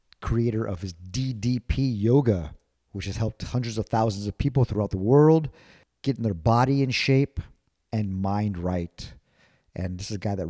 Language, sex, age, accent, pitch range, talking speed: English, male, 50-69, American, 95-125 Hz, 170 wpm